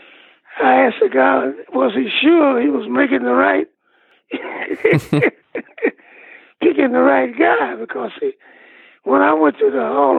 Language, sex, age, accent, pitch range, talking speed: English, male, 60-79, American, 255-400 Hz, 135 wpm